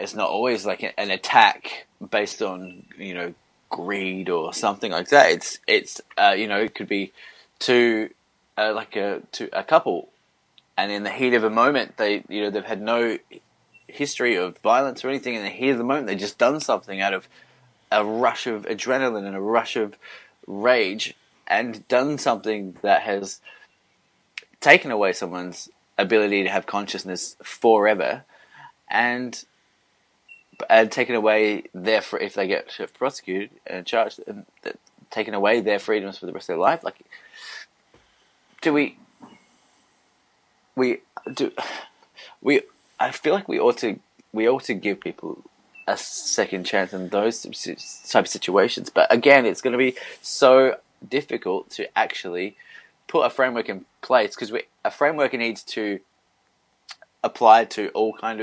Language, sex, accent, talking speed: English, male, Australian, 160 wpm